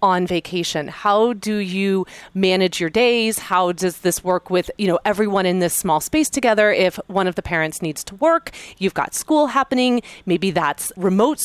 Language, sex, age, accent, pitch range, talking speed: English, female, 30-49, American, 180-225 Hz, 190 wpm